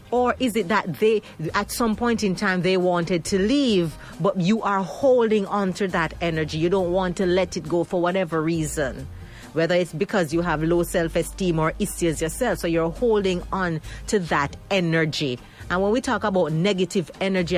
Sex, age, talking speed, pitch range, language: female, 40-59, 190 wpm, 165-225 Hz, English